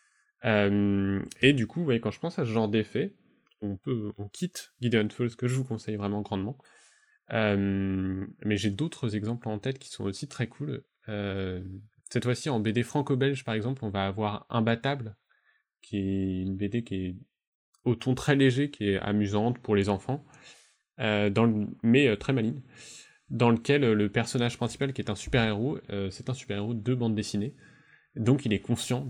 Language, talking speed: French, 190 wpm